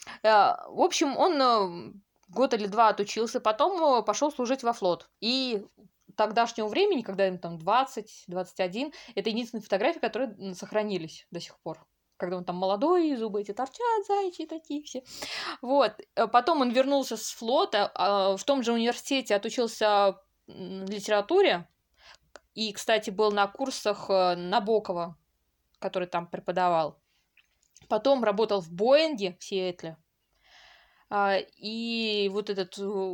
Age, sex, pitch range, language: 20-39, female, 200-270 Hz, Russian